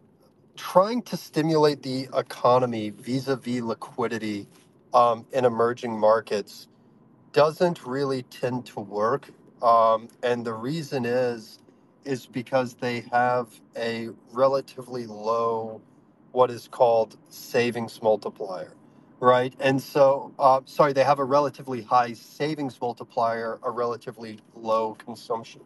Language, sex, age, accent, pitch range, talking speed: English, male, 30-49, American, 115-135 Hz, 115 wpm